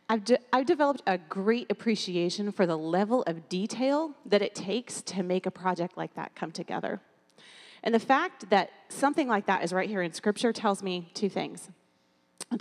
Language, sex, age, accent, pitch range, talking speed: English, female, 30-49, American, 180-235 Hz, 185 wpm